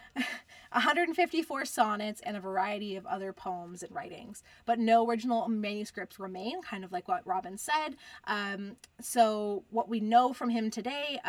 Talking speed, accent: 155 wpm, American